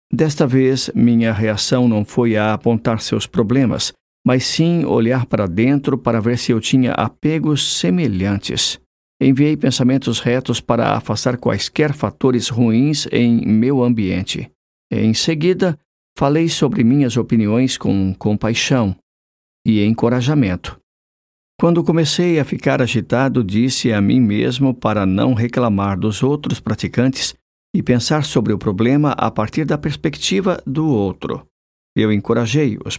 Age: 50-69